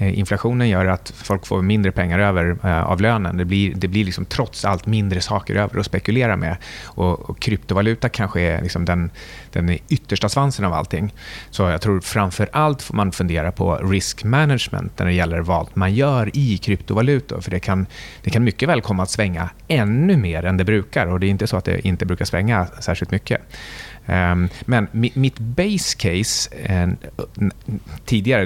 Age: 30-49